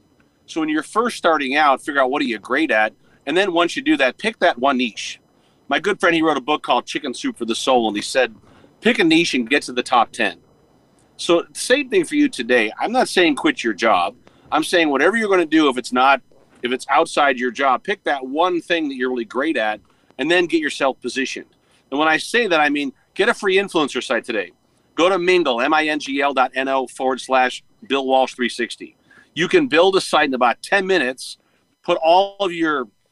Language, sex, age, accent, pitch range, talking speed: English, male, 40-59, American, 135-190 Hz, 225 wpm